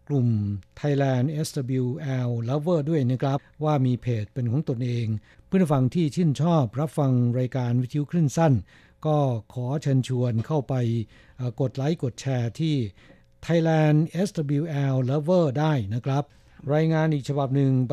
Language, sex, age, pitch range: Thai, male, 60-79, 120-150 Hz